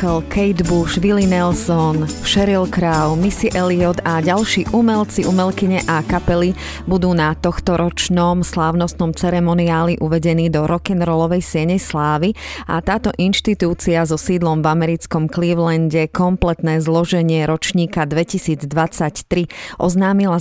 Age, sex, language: 30-49, female, Slovak